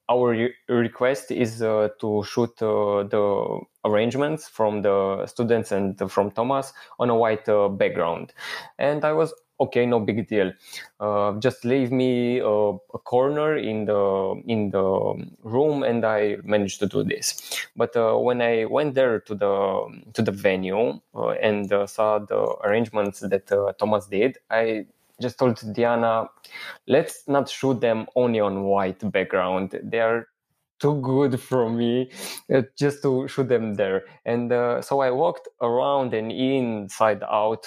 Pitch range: 105-130 Hz